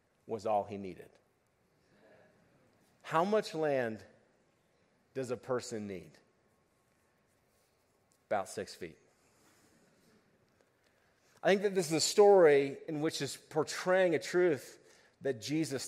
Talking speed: 110 wpm